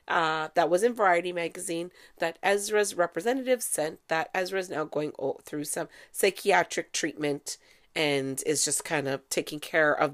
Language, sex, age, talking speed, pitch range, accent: English, female, 40-59, 155 wpm, 150-215 Hz, American